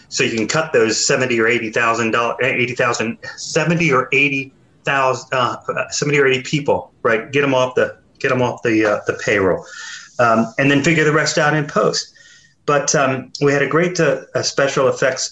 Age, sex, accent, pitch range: 30-49, male, American, 120-155 Hz